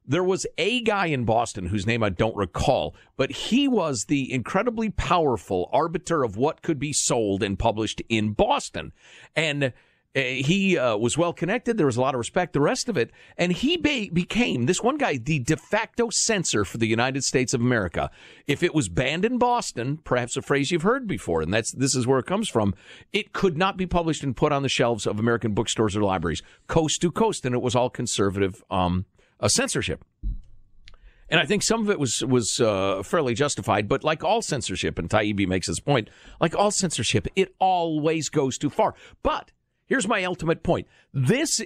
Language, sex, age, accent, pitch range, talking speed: English, male, 50-69, American, 115-190 Hz, 200 wpm